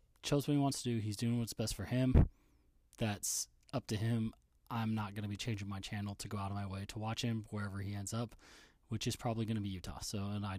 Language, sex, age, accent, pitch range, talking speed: English, male, 20-39, American, 100-115 Hz, 265 wpm